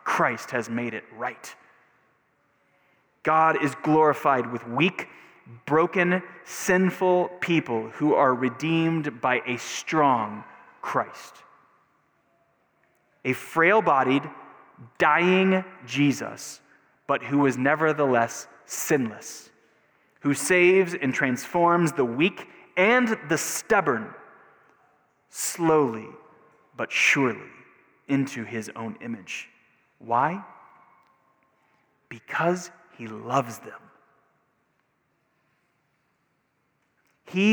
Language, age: English, 20-39